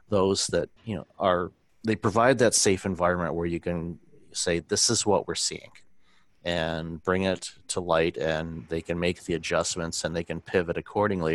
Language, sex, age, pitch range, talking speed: English, male, 30-49, 85-95 Hz, 185 wpm